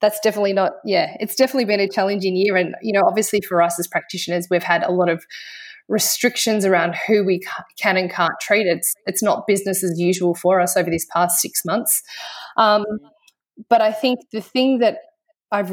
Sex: female